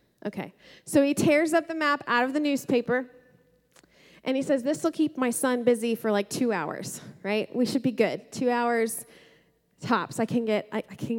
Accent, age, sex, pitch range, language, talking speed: American, 20-39, female, 210-265 Hz, English, 180 wpm